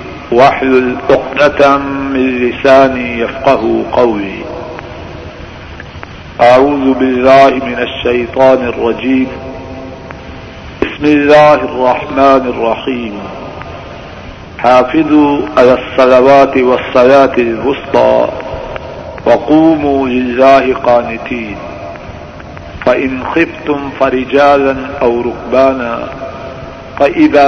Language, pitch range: Urdu, 125-145 Hz